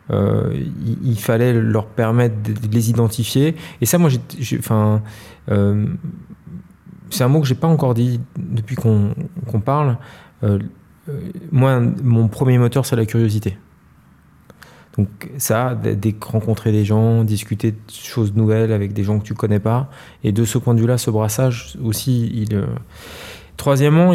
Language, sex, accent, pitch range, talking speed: French, male, French, 105-130 Hz, 160 wpm